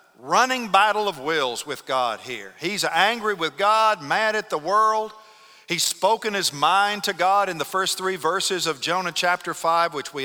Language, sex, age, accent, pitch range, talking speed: English, male, 50-69, American, 155-215 Hz, 185 wpm